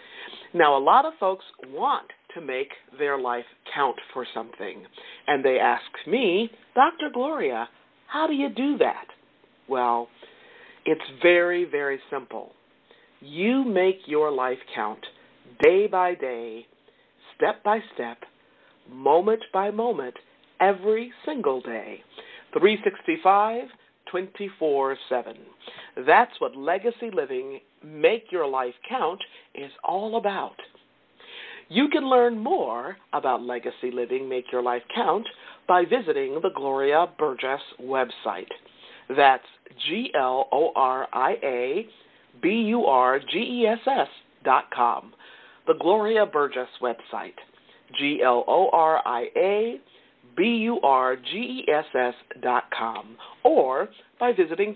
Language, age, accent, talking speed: English, 50-69, American, 100 wpm